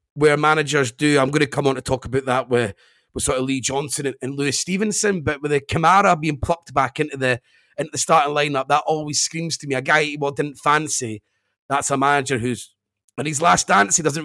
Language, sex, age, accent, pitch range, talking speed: English, male, 30-49, British, 135-155 Hz, 235 wpm